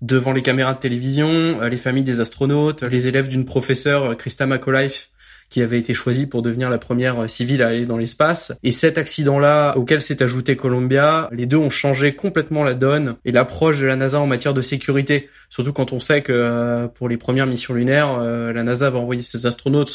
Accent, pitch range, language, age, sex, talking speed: French, 125-145 Hz, French, 20-39, male, 200 wpm